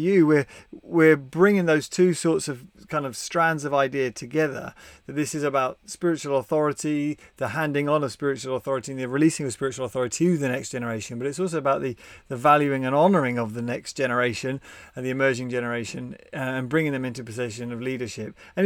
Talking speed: 195 wpm